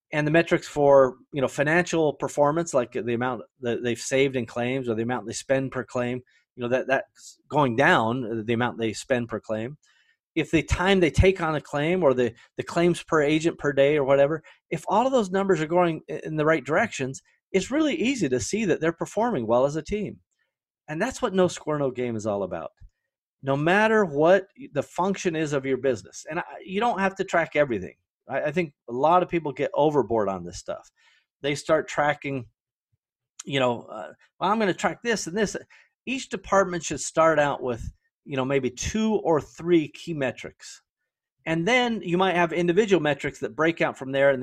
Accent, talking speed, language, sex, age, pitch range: American, 210 wpm, English, male, 30-49, 130-185 Hz